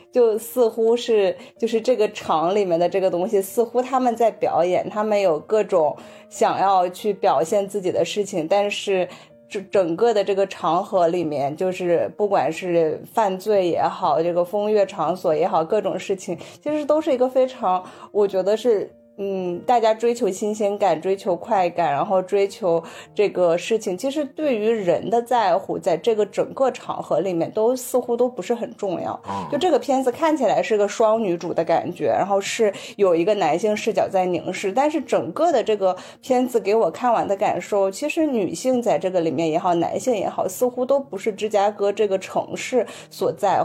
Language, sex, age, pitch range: Chinese, female, 30-49, 185-235 Hz